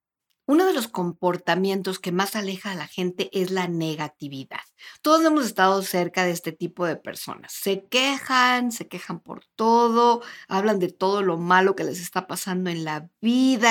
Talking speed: 175 wpm